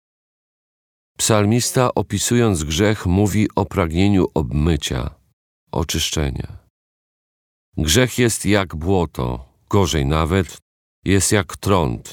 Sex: male